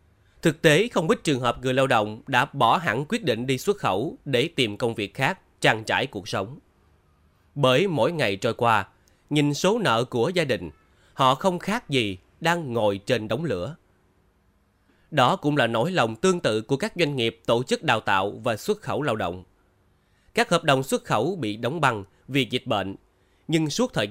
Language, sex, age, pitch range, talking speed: Vietnamese, male, 20-39, 100-155 Hz, 200 wpm